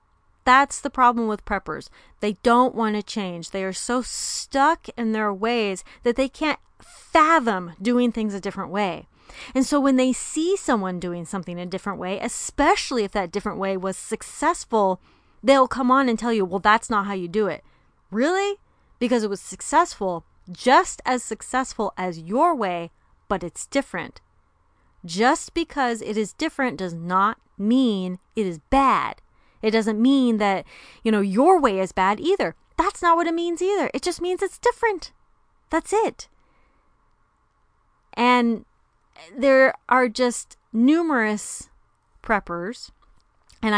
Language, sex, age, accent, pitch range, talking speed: English, female, 30-49, American, 195-260 Hz, 155 wpm